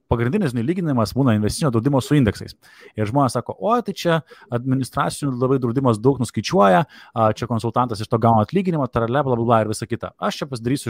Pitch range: 115-145 Hz